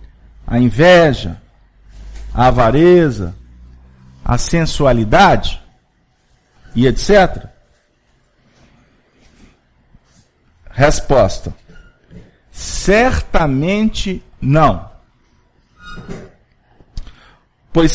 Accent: Brazilian